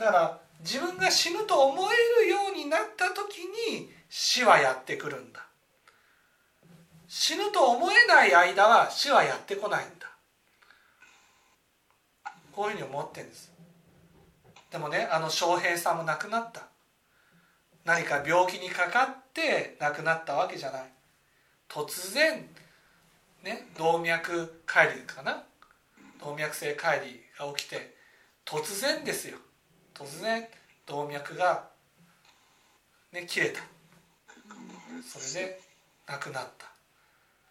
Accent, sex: native, male